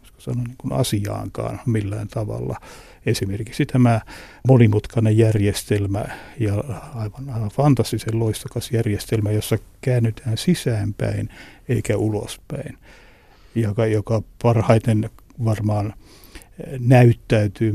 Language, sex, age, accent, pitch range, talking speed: Finnish, male, 60-79, native, 105-120 Hz, 80 wpm